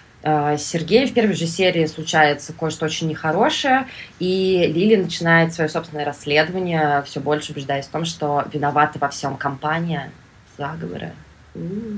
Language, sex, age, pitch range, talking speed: Russian, female, 20-39, 155-185 Hz, 130 wpm